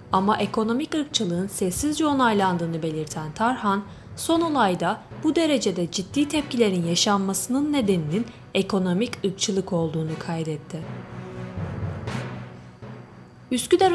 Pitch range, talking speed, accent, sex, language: 180-275 Hz, 85 wpm, native, female, Turkish